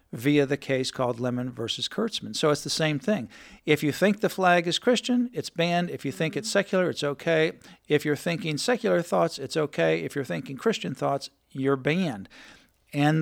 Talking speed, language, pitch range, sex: 195 wpm, English, 135-175 Hz, male